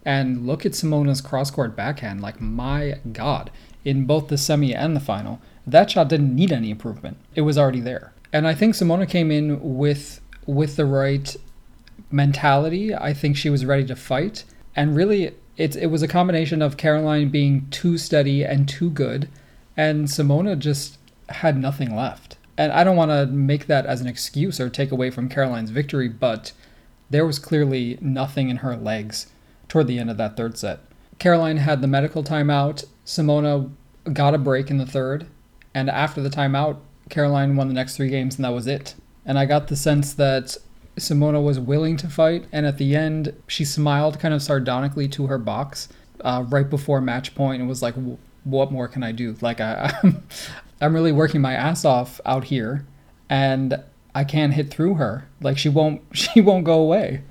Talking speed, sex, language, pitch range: 190 wpm, male, English, 130-150 Hz